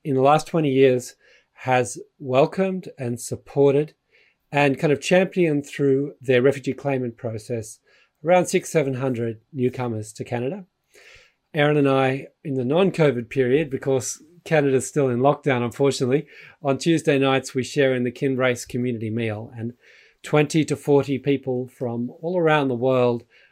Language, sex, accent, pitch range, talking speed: English, male, Australian, 120-140 Hz, 145 wpm